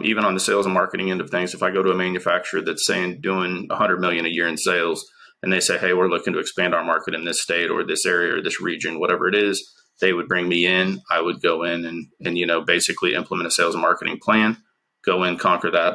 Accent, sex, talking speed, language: American, male, 265 wpm, English